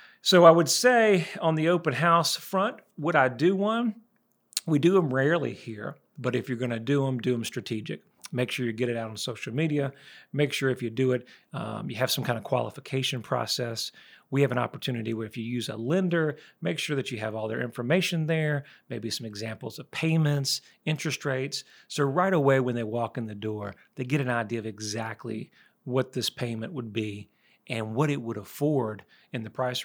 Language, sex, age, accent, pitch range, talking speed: English, male, 40-59, American, 115-155 Hz, 210 wpm